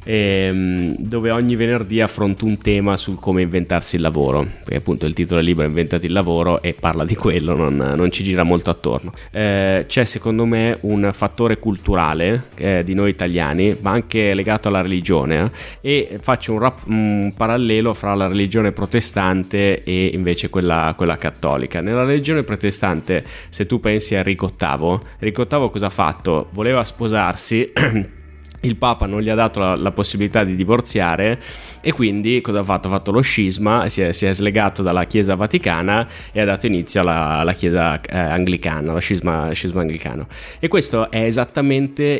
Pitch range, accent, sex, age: 90-110 Hz, native, male, 20-39